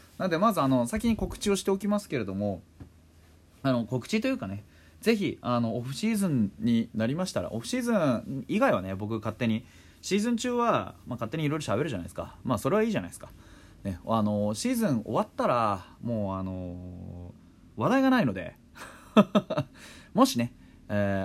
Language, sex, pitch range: Japanese, male, 95-150 Hz